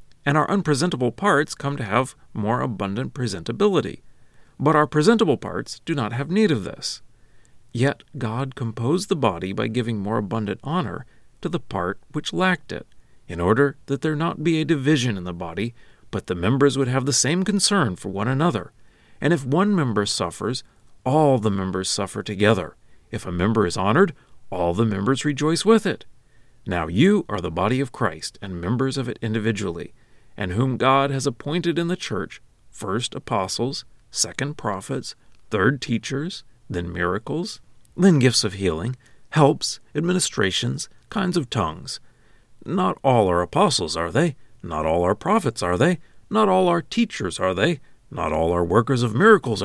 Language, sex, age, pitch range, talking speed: English, male, 40-59, 105-155 Hz, 170 wpm